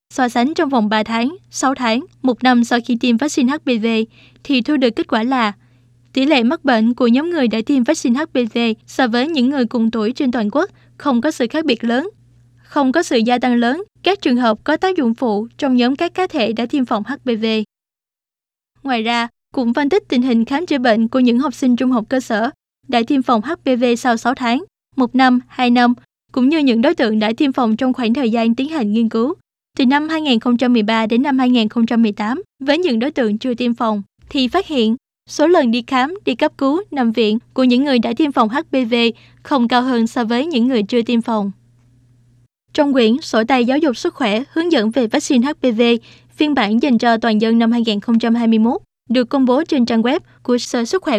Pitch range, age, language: 230-275 Hz, 20-39, Chinese